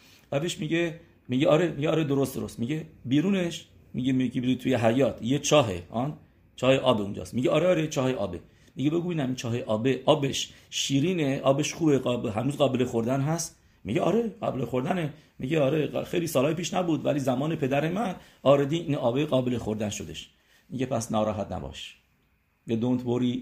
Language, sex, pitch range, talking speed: English, male, 110-150 Hz, 165 wpm